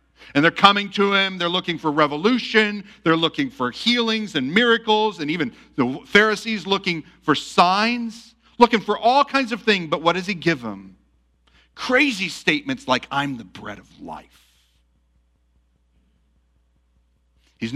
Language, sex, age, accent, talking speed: English, male, 40-59, American, 145 wpm